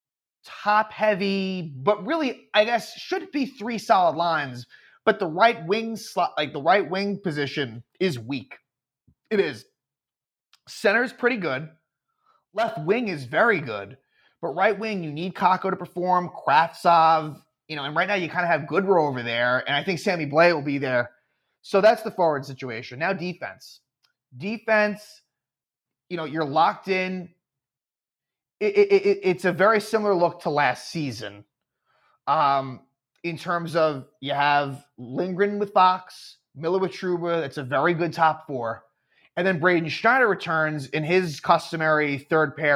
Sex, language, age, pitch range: male, English, 30-49, 140-190 Hz